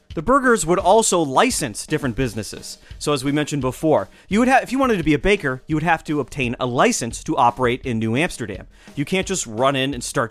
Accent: American